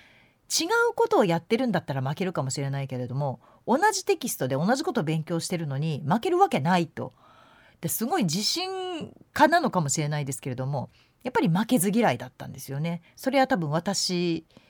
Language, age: Japanese, 40-59